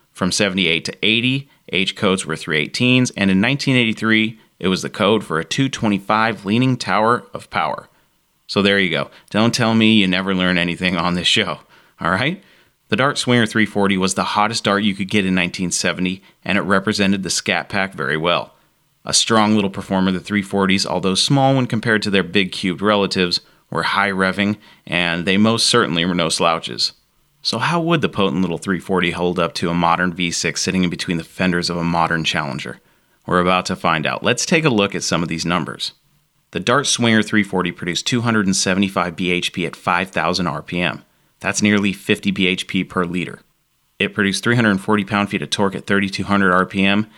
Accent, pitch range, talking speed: American, 90-110 Hz, 180 wpm